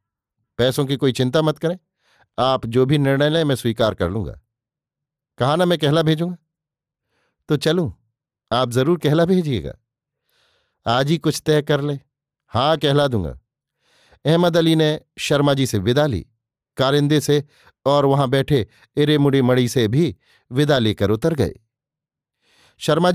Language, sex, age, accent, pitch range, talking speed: Hindi, male, 50-69, native, 125-150 Hz, 150 wpm